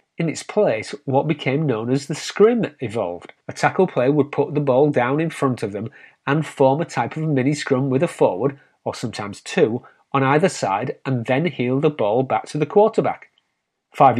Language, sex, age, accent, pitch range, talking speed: English, male, 30-49, British, 125-160 Hz, 200 wpm